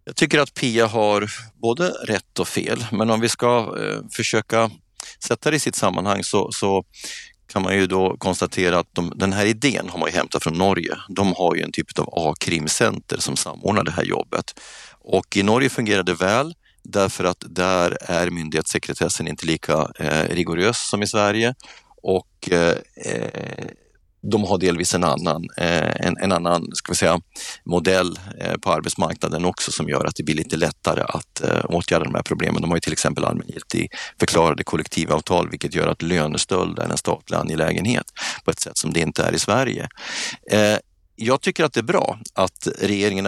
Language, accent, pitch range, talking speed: Swedish, native, 85-105 Hz, 175 wpm